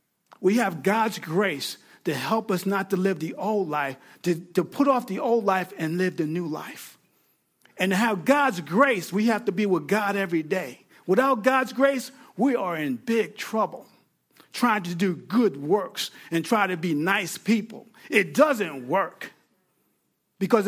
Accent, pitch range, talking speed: American, 190-270 Hz, 175 wpm